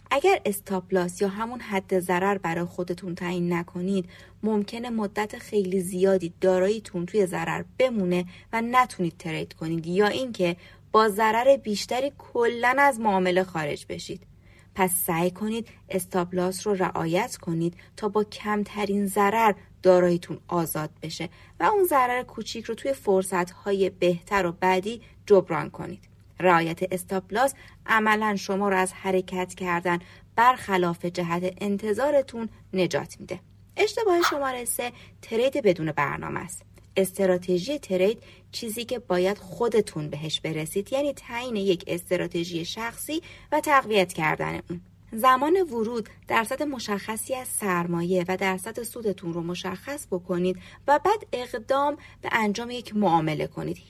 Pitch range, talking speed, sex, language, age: 180-235 Hz, 130 wpm, female, Persian, 30-49